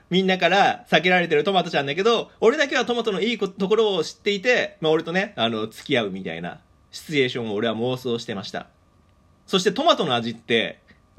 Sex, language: male, Japanese